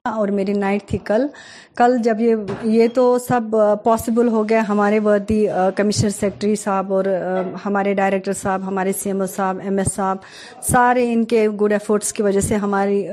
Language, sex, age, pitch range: Urdu, female, 30-49, 200-240 Hz